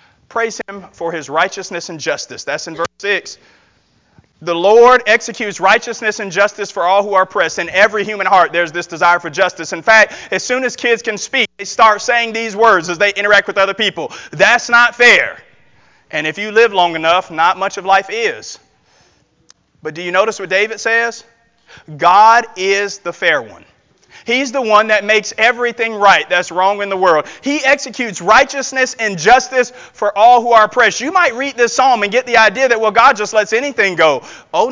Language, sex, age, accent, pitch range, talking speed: English, male, 30-49, American, 200-255 Hz, 200 wpm